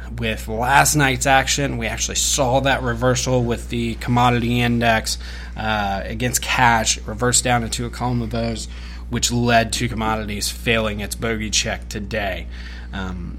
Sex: male